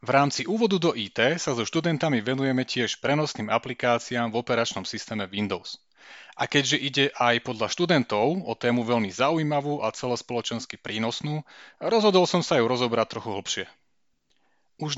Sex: male